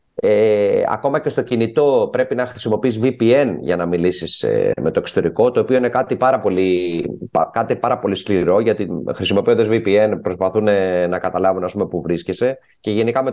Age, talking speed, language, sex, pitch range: 30-49, 175 wpm, Greek, male, 110-145 Hz